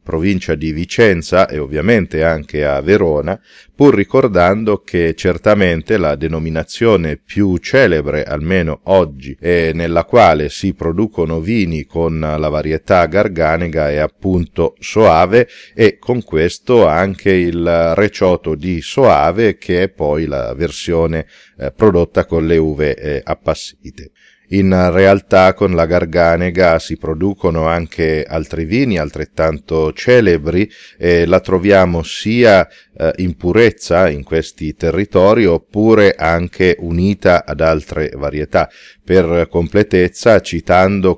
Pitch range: 80-95 Hz